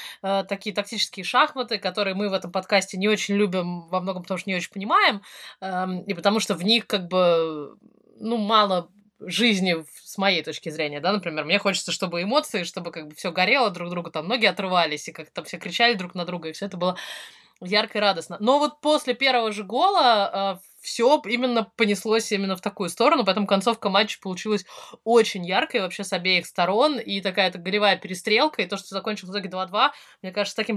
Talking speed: 200 wpm